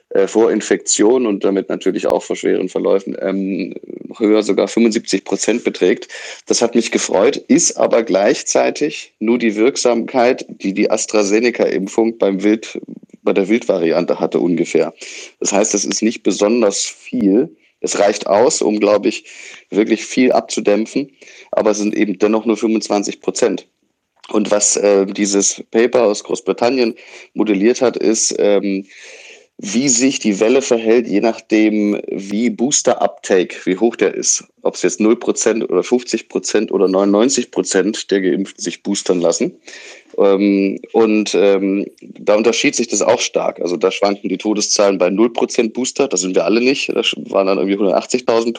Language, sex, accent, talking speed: German, male, German, 150 wpm